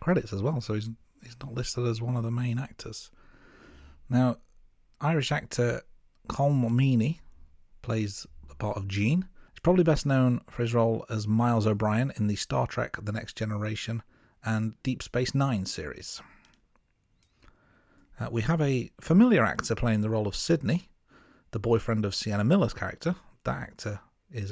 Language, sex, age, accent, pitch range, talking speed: English, male, 40-59, British, 110-140 Hz, 160 wpm